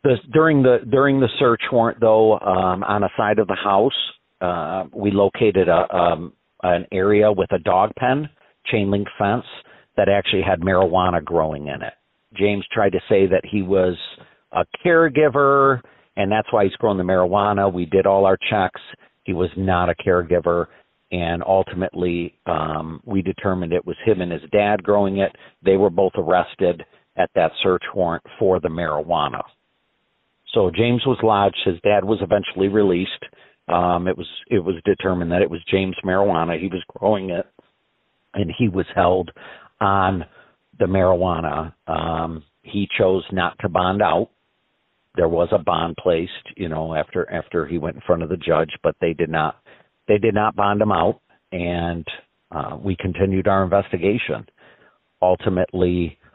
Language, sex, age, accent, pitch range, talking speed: English, male, 50-69, American, 90-105 Hz, 165 wpm